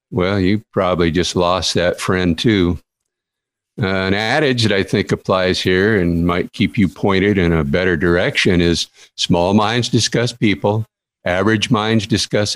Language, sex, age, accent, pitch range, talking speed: English, male, 50-69, American, 90-110 Hz, 160 wpm